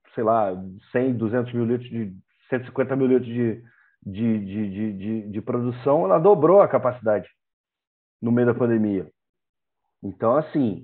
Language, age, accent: Portuguese, 40-59, Brazilian